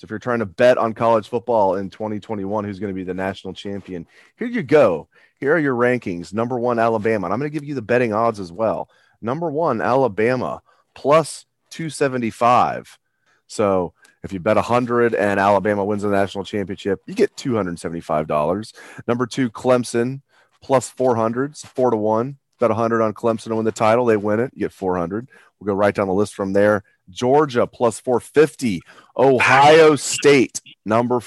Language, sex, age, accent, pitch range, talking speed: English, male, 30-49, American, 100-130 Hz, 185 wpm